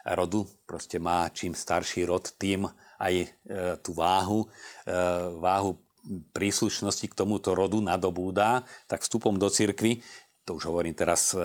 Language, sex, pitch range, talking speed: Slovak, male, 90-105 Hz, 125 wpm